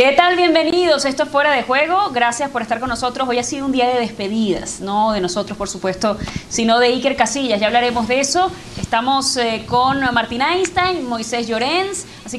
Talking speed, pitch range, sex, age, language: 200 wpm, 225-275 Hz, female, 20-39, Spanish